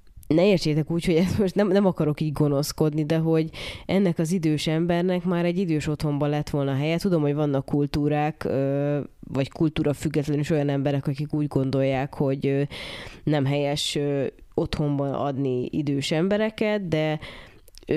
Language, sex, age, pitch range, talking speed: Hungarian, female, 20-39, 140-160 Hz, 150 wpm